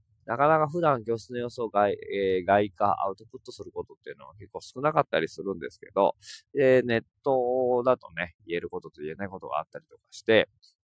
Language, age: Japanese, 20-39